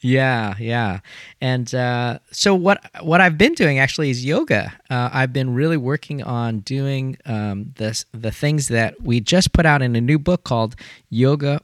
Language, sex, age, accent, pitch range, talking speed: English, male, 40-59, American, 110-140 Hz, 180 wpm